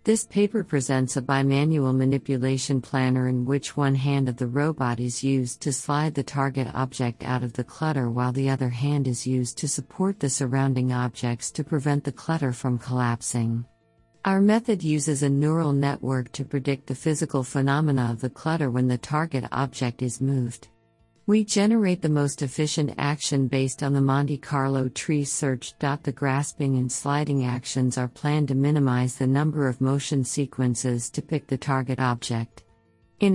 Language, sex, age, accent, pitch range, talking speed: English, female, 50-69, American, 130-150 Hz, 170 wpm